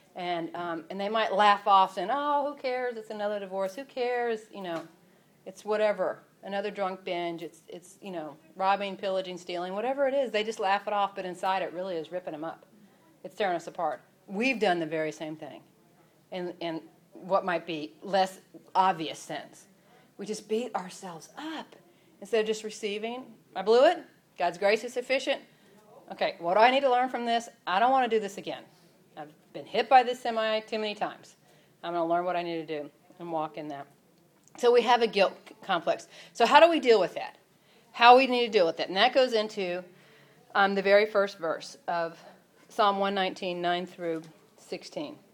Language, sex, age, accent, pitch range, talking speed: English, female, 40-59, American, 175-220 Hz, 205 wpm